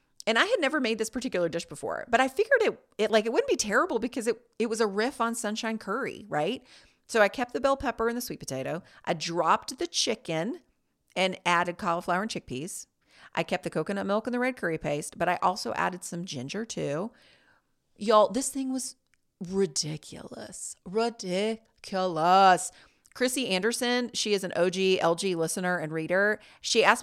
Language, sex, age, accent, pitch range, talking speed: English, female, 40-59, American, 175-240 Hz, 185 wpm